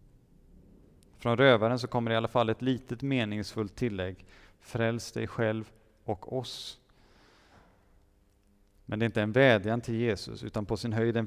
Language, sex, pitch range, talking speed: Swedish, male, 100-120 Hz, 155 wpm